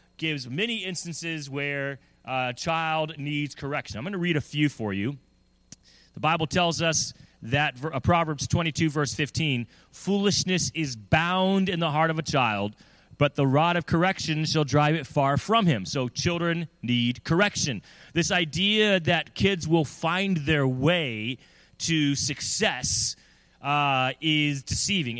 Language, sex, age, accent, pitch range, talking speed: English, male, 30-49, American, 135-170 Hz, 150 wpm